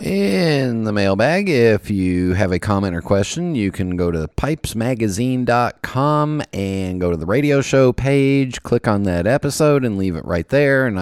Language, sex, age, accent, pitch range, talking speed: English, male, 40-59, American, 90-120 Hz, 175 wpm